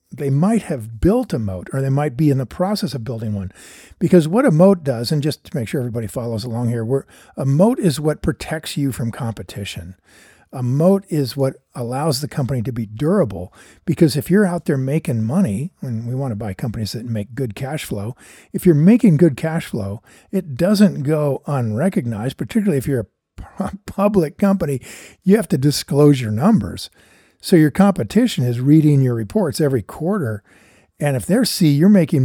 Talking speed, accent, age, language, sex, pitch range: 195 wpm, American, 50-69, English, male, 130-185 Hz